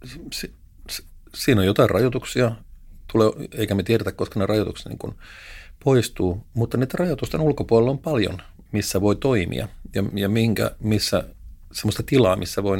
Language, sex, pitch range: Finnish, male, 90-115 Hz